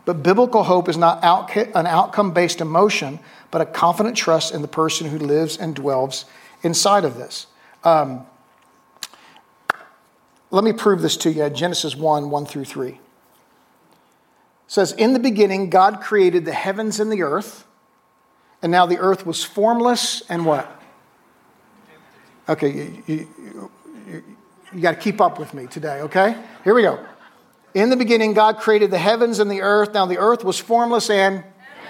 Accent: American